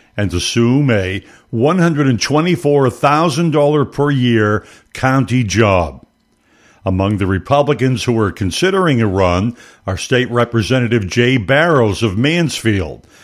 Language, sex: English, male